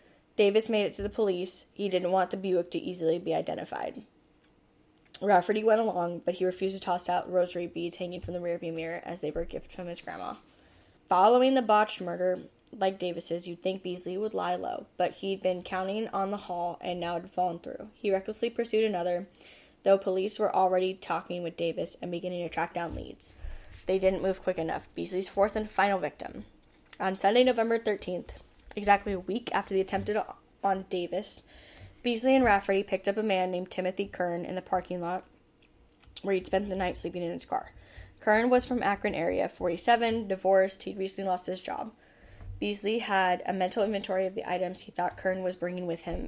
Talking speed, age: 195 wpm, 10-29